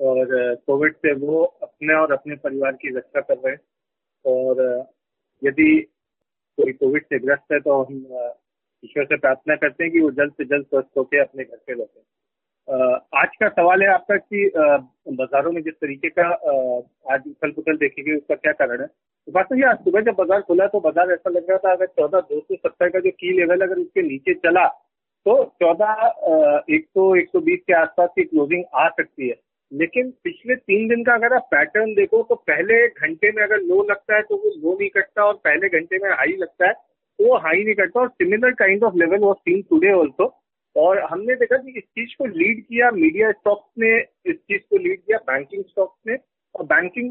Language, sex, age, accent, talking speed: Hindi, male, 40-59, native, 195 wpm